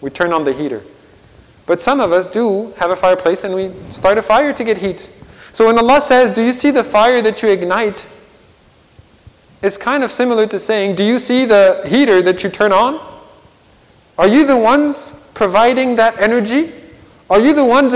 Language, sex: English, male